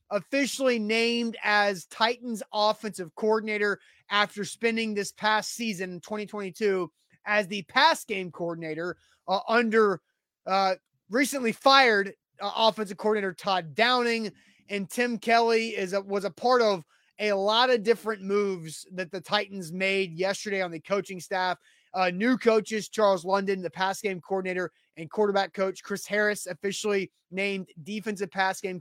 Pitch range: 185-220 Hz